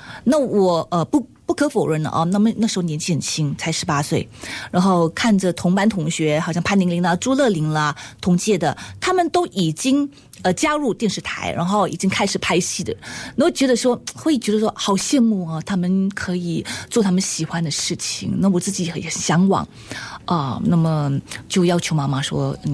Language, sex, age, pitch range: Chinese, female, 20-39, 160-215 Hz